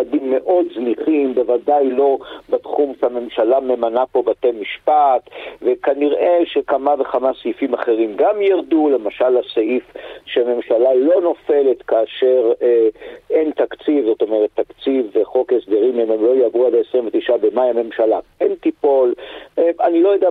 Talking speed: 135 wpm